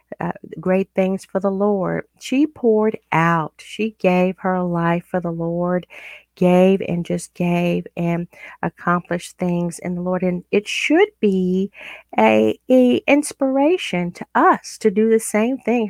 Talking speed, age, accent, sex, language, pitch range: 150 wpm, 40-59, American, female, English, 175-235 Hz